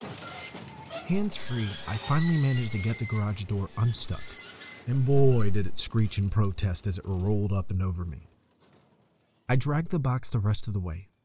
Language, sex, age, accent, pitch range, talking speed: English, male, 30-49, American, 95-125 Hz, 175 wpm